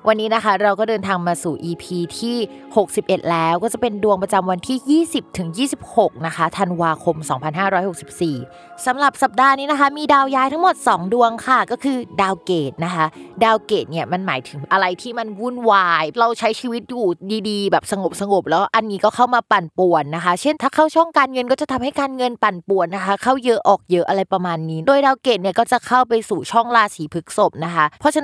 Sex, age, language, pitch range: female, 20-39, Thai, 170-240 Hz